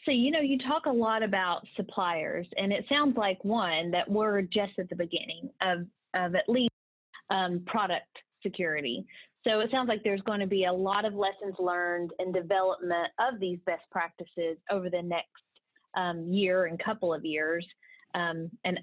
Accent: American